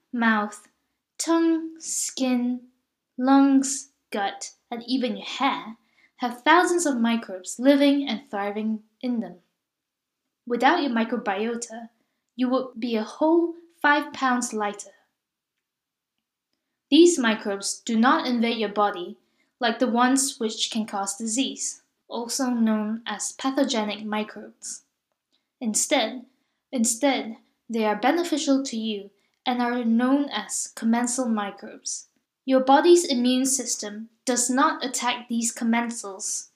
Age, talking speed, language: 10-29, 115 wpm, English